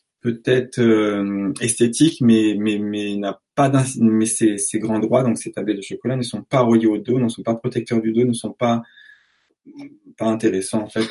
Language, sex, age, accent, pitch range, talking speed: French, male, 20-39, French, 110-135 Hz, 195 wpm